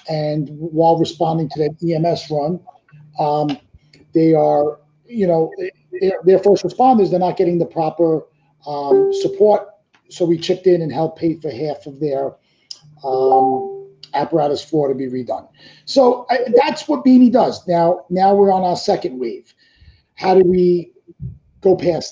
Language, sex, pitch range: English, male, 155-185 Hz